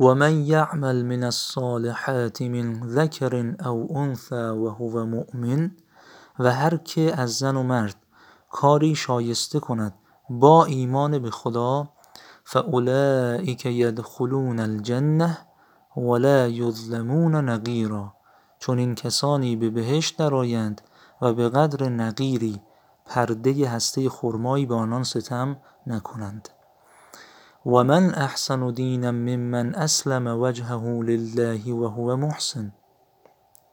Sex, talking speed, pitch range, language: male, 100 wpm, 115-140 Hz, Persian